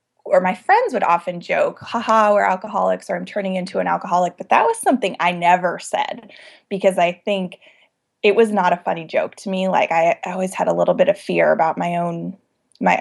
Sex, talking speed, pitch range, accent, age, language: female, 215 wpm, 180-230 Hz, American, 20-39, English